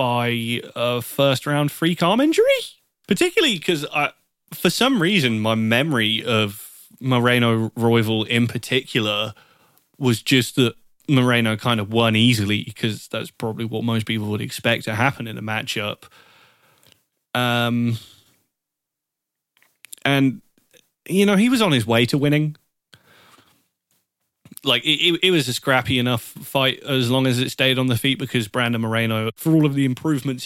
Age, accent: 20-39, British